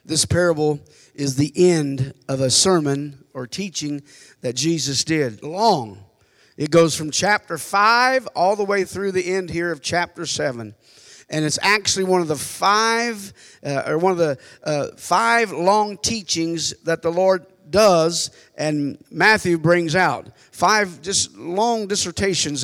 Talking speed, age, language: 150 wpm, 50-69, English